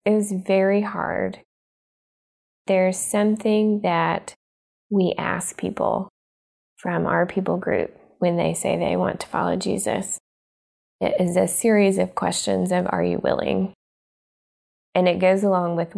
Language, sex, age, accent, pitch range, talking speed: English, female, 20-39, American, 165-195 Hz, 135 wpm